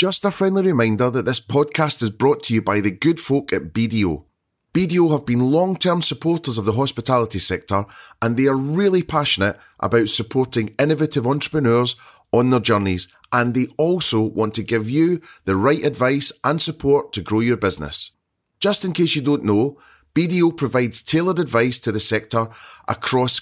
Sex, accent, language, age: male, British, English, 30-49